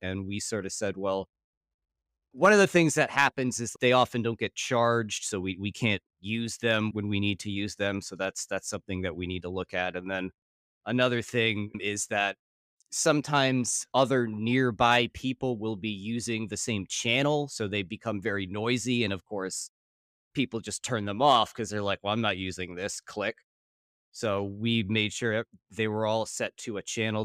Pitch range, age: 95-120 Hz, 20-39